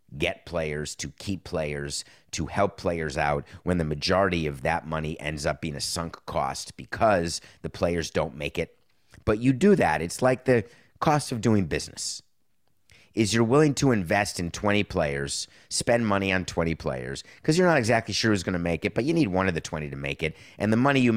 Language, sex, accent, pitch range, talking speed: English, male, American, 85-120 Hz, 215 wpm